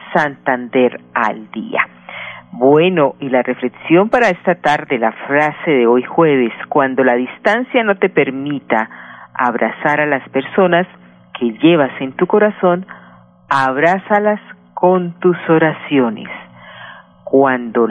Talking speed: 115 wpm